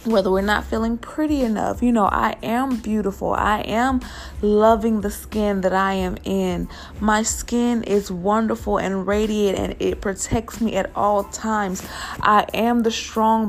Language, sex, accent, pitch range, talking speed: English, female, American, 190-230 Hz, 165 wpm